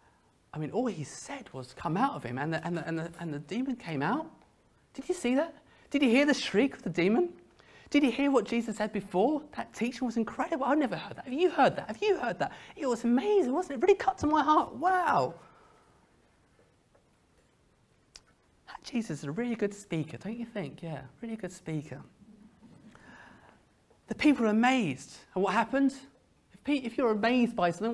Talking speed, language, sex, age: 205 wpm, English, male, 30-49